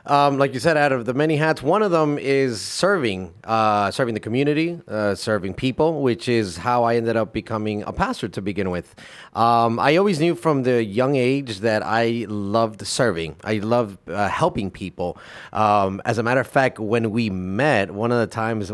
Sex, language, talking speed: male, English, 200 wpm